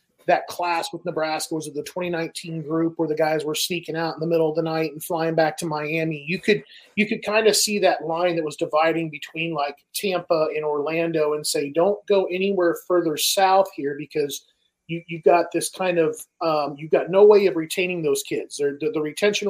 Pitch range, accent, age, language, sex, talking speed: 155-190 Hz, American, 30-49, English, male, 220 wpm